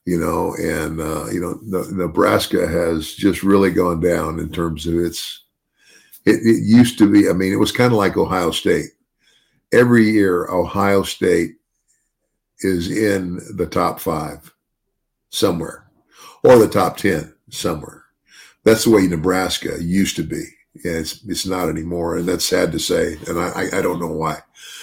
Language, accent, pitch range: English, American, 85-105 Hz